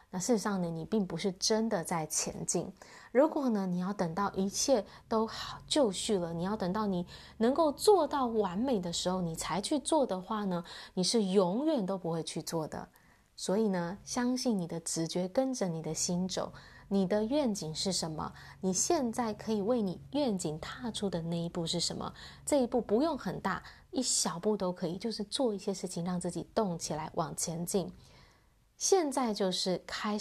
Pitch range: 175-235 Hz